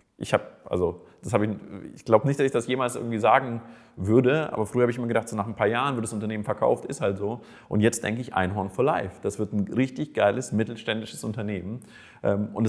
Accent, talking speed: German, 220 wpm